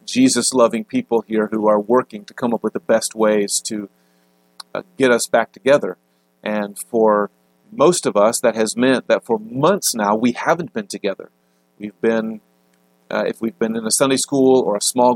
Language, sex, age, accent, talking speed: English, male, 40-59, American, 190 wpm